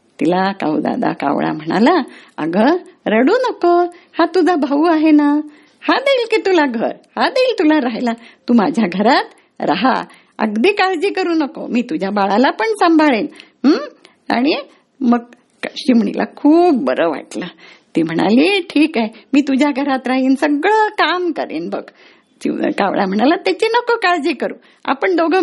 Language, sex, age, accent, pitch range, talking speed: Marathi, female, 50-69, native, 230-350 Hz, 145 wpm